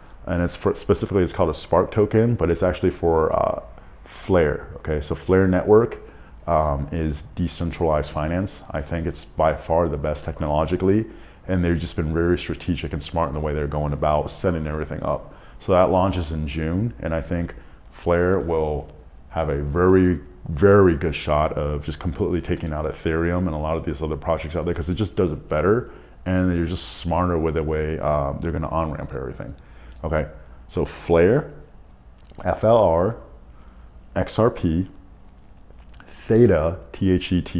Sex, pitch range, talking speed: male, 75-90 Hz, 175 wpm